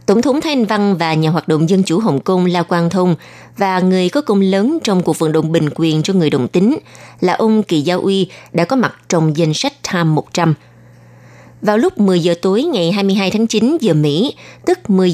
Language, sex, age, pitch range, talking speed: Vietnamese, female, 20-39, 165-220 Hz, 220 wpm